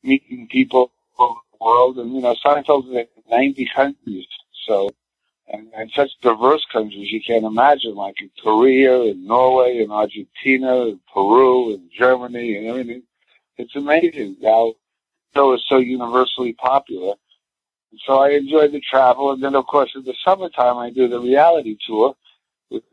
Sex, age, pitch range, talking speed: male, 60-79, 110-130 Hz, 160 wpm